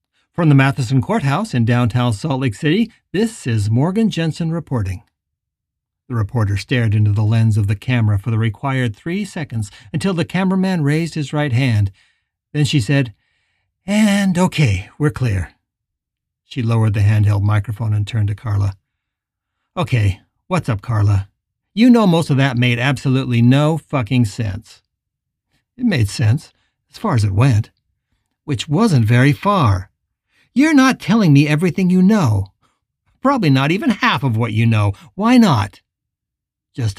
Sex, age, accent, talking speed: male, 60-79, American, 155 wpm